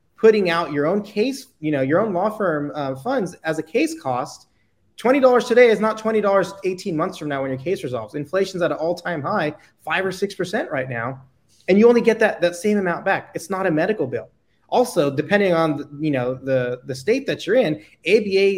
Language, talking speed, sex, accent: English, 225 wpm, male, American